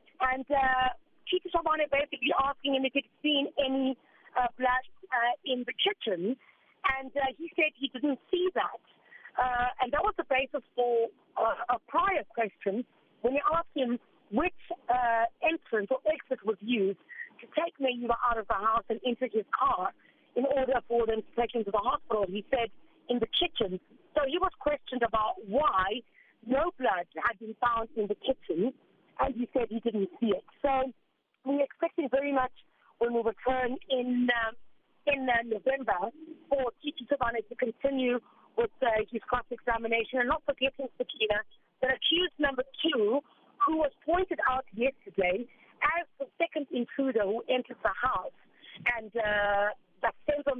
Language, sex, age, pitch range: English, female, 40-59, 230-290 Hz